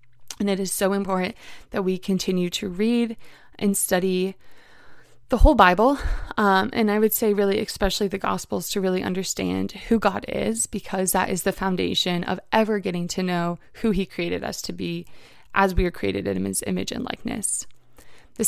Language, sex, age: English, female, 20-39